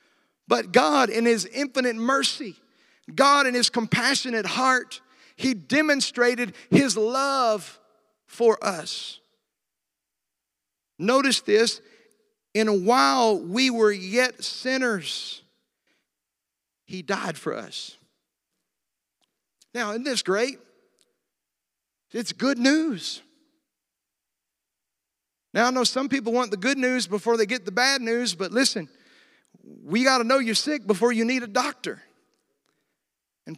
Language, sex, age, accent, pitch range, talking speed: English, male, 50-69, American, 220-265 Hz, 120 wpm